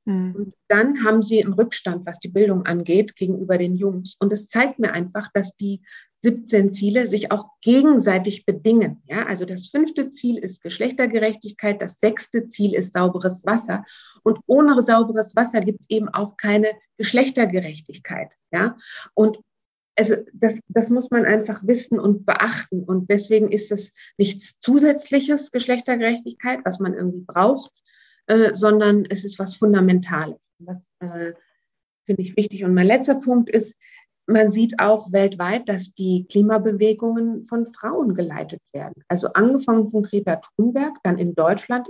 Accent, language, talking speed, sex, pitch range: German, German, 150 wpm, female, 190-230 Hz